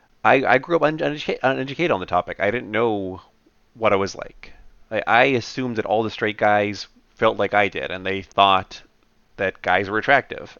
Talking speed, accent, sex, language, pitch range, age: 180 wpm, American, male, English, 95-115 Hz, 30-49